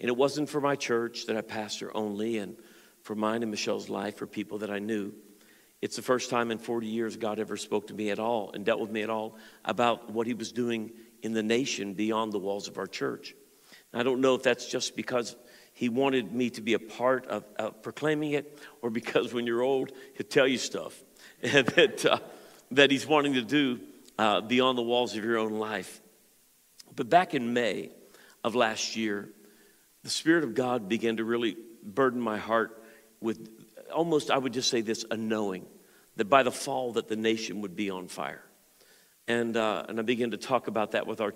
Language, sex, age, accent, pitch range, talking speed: English, male, 50-69, American, 110-130 Hz, 210 wpm